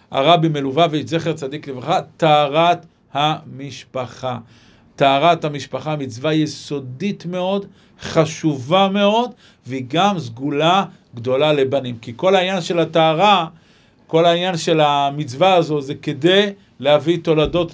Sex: male